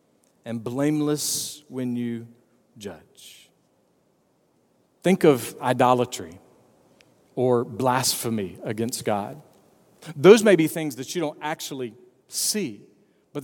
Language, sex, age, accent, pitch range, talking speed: English, male, 40-59, American, 125-155 Hz, 100 wpm